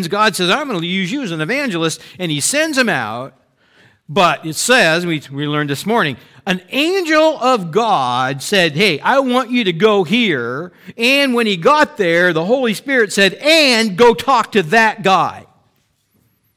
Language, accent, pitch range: English, American, 135-215 Hz